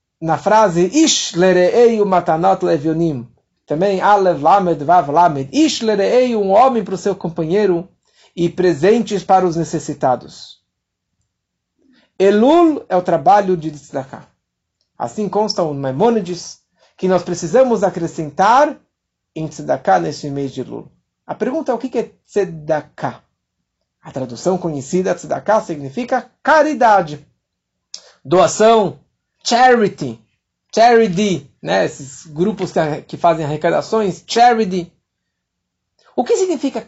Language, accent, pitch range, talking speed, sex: Portuguese, Brazilian, 165-230 Hz, 110 wpm, male